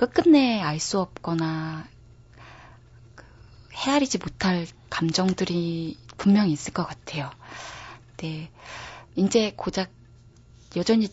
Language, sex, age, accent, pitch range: Korean, female, 20-39, native, 155-205 Hz